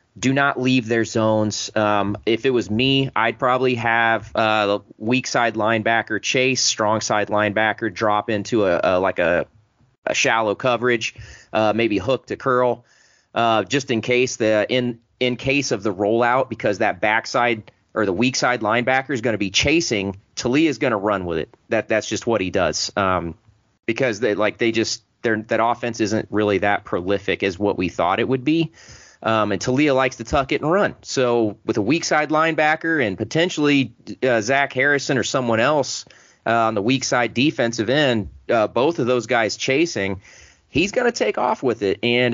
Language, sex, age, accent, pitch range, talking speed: English, male, 30-49, American, 110-130 Hz, 190 wpm